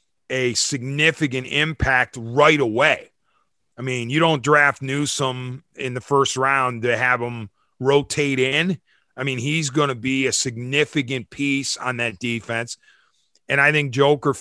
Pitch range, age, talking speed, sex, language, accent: 125-165 Hz, 40-59, 150 wpm, male, English, American